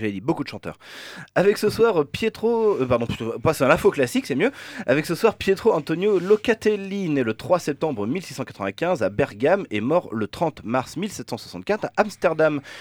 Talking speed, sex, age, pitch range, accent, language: 185 wpm, male, 30-49, 110-180 Hz, French, French